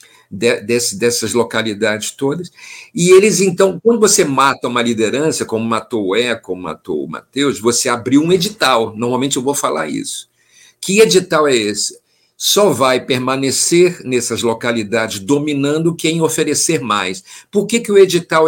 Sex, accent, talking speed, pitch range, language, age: male, Brazilian, 150 wpm, 120-165 Hz, Portuguese, 50-69